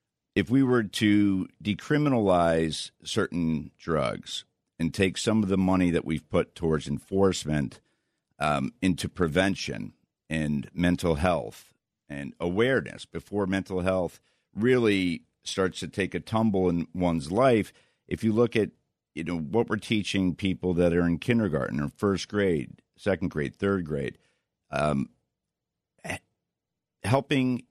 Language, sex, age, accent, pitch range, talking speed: English, male, 50-69, American, 85-105 Hz, 130 wpm